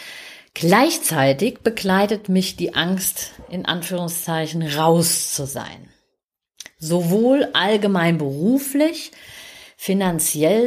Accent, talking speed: German, 80 wpm